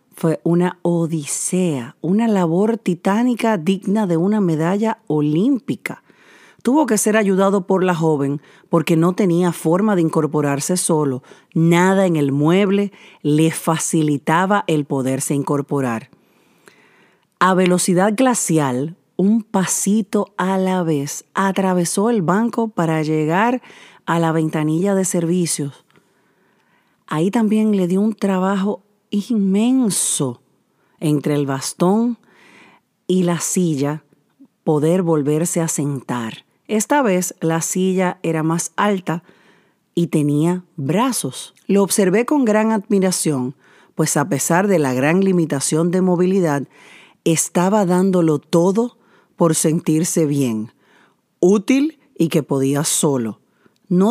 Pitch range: 155-200 Hz